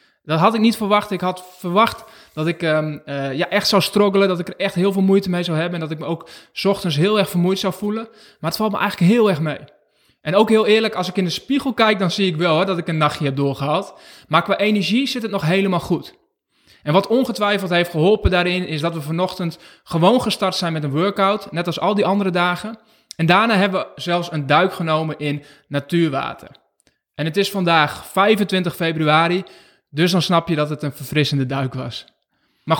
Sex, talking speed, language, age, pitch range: male, 225 wpm, Dutch, 20-39, 155-200 Hz